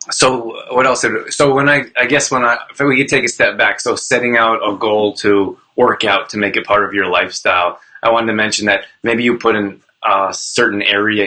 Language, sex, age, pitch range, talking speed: English, male, 20-39, 100-120 Hz, 235 wpm